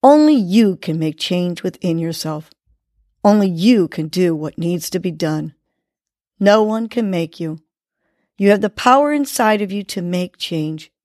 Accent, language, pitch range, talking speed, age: American, English, 170-235 Hz, 170 wpm, 50-69